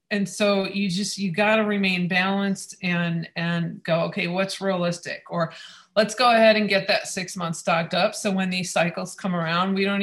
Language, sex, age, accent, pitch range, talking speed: English, female, 40-59, American, 165-195 Hz, 205 wpm